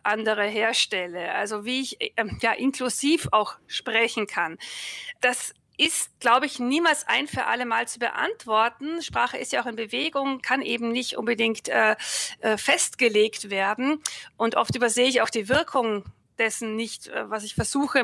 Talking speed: 160 wpm